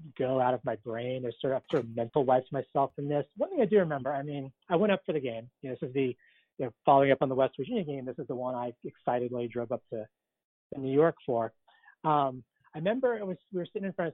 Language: English